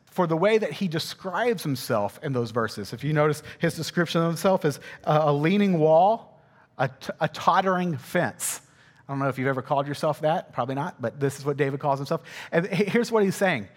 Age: 40-59